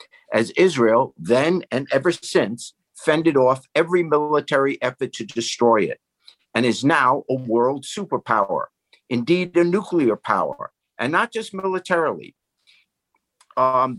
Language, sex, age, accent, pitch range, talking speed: English, male, 50-69, American, 130-180 Hz, 125 wpm